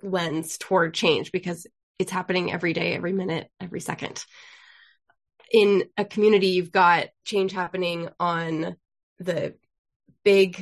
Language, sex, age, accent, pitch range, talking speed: English, female, 20-39, American, 180-210 Hz, 125 wpm